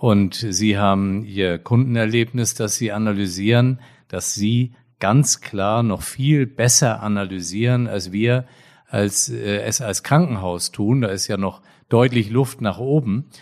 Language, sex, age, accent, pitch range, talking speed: German, male, 40-59, German, 100-125 Hz, 145 wpm